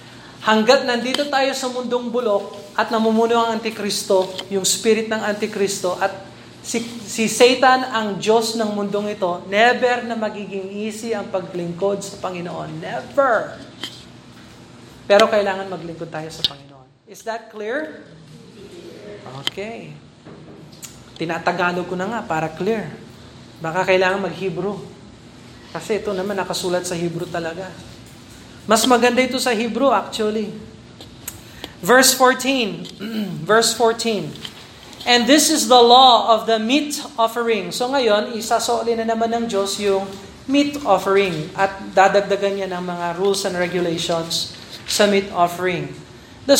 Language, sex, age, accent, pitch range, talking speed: Filipino, male, 20-39, native, 190-235 Hz, 125 wpm